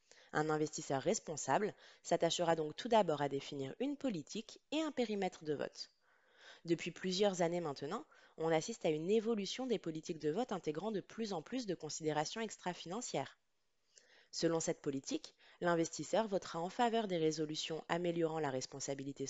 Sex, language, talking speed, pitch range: female, French, 150 wpm, 150-195 Hz